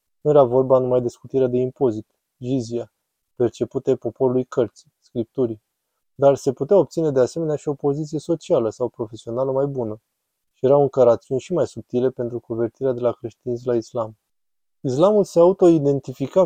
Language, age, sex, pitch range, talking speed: Romanian, 20-39, male, 120-140 Hz, 160 wpm